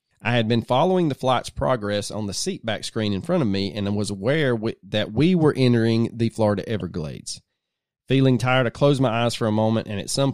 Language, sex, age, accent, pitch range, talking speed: English, male, 30-49, American, 110-135 Hz, 220 wpm